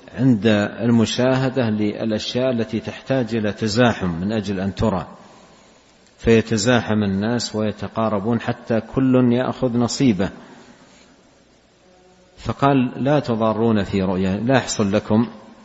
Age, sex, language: 50-69, male, Arabic